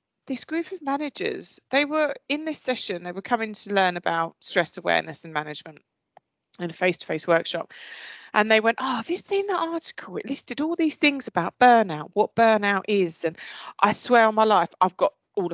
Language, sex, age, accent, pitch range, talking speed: English, female, 30-49, British, 200-295 Hz, 195 wpm